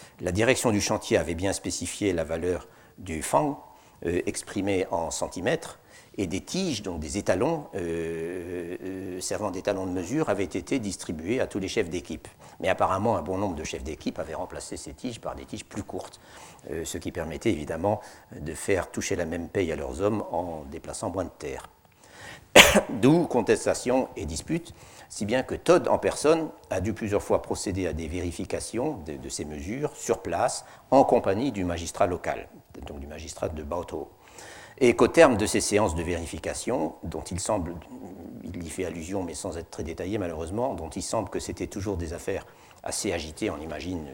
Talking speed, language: 190 wpm, French